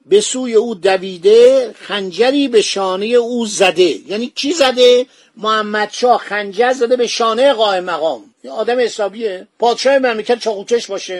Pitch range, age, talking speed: 200-250 Hz, 50-69, 135 wpm